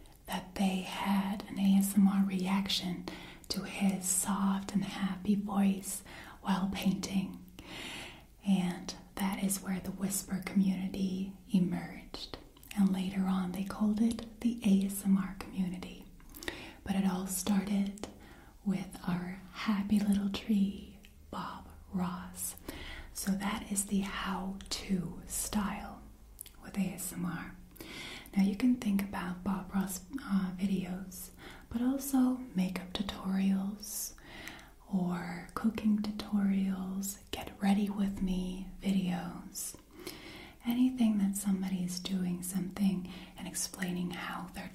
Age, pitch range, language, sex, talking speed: 30-49, 185-200 Hz, English, female, 110 wpm